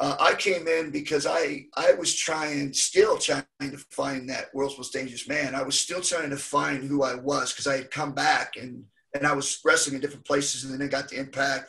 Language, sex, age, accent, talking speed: Spanish, male, 30-49, American, 235 wpm